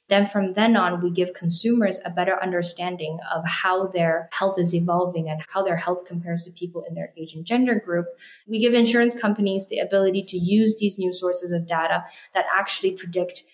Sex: female